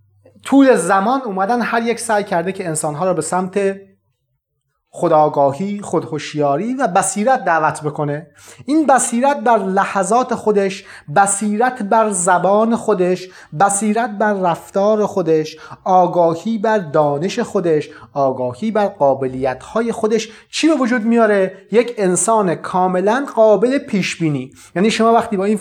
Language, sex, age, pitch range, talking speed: Persian, male, 30-49, 170-240 Hz, 125 wpm